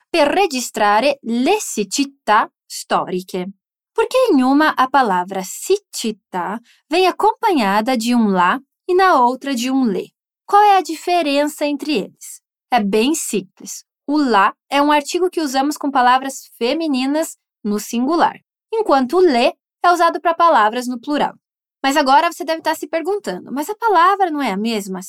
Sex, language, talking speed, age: female, Portuguese, 150 wpm, 20-39